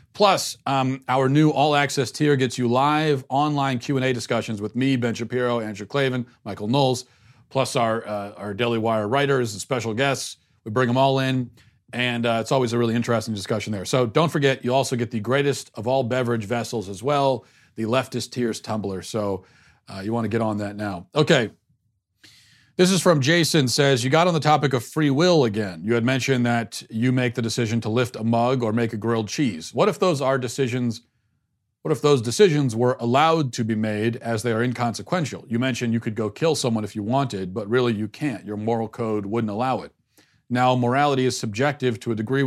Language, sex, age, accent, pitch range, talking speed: English, male, 40-59, American, 115-135 Hz, 210 wpm